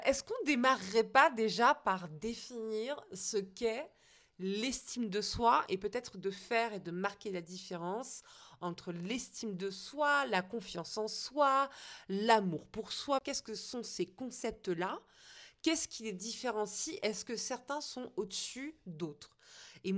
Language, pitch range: French, 180-235 Hz